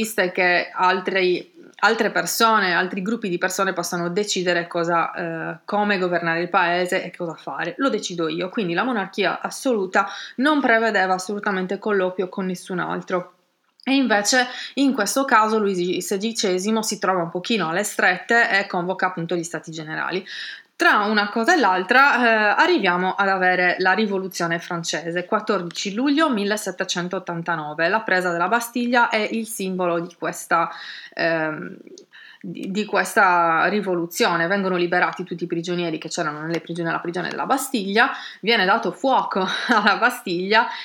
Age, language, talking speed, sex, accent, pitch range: 20-39, Italian, 145 wpm, female, native, 175-220 Hz